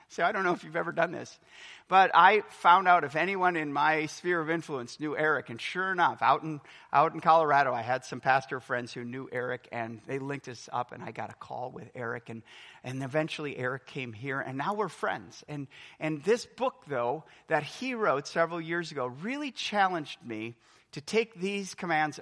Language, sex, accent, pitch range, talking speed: English, male, American, 135-200 Hz, 210 wpm